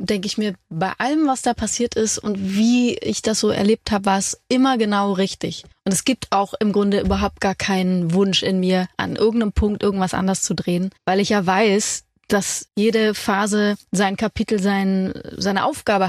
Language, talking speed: German, 190 wpm